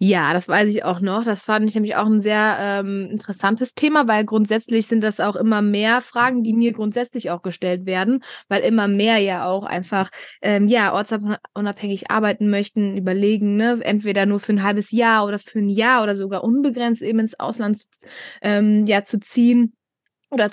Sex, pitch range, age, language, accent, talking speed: female, 200-235 Hz, 20-39, German, German, 190 wpm